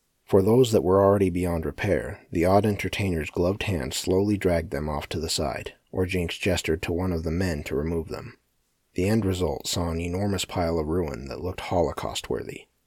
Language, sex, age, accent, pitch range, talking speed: English, male, 30-49, American, 85-100 Hz, 195 wpm